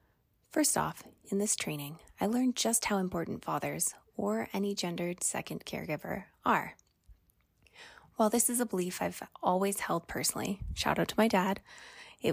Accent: American